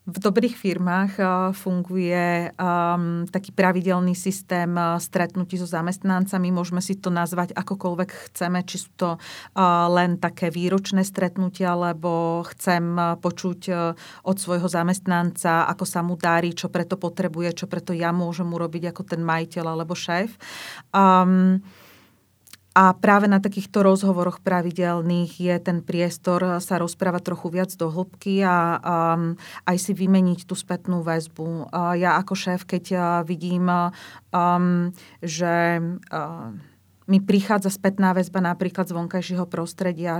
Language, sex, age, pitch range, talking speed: Slovak, female, 30-49, 175-185 Hz, 130 wpm